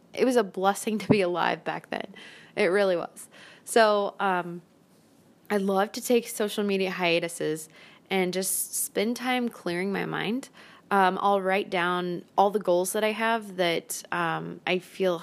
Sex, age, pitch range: female, 20-39, 175-200 Hz